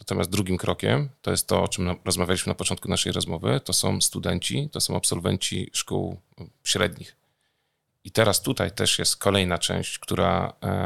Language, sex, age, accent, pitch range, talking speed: Polish, male, 40-59, native, 90-105 Hz, 160 wpm